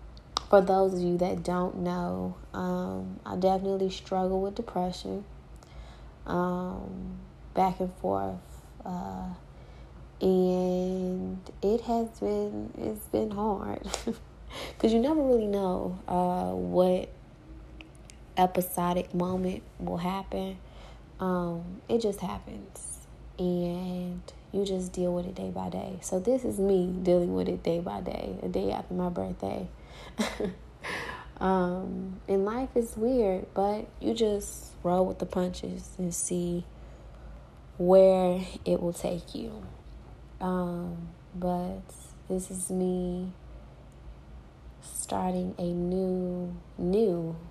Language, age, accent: English, 20-39, American